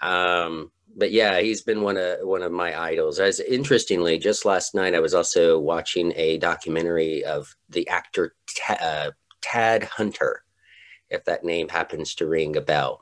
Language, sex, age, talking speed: English, male, 40-59, 165 wpm